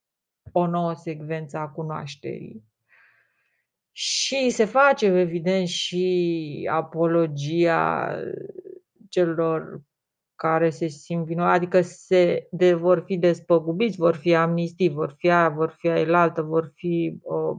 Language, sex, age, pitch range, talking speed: Romanian, female, 30-49, 165-190 Hz, 115 wpm